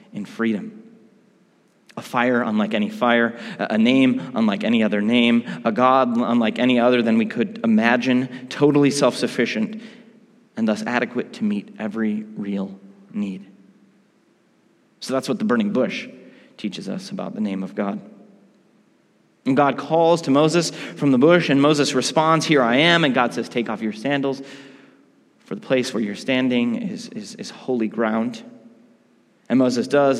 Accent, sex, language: American, male, English